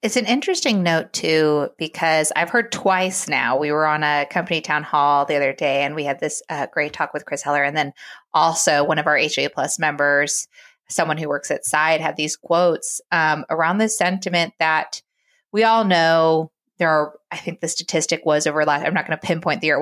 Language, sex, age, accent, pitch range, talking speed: English, female, 20-39, American, 155-190 Hz, 220 wpm